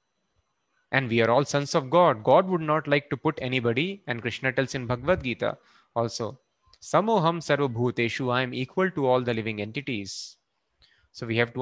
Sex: male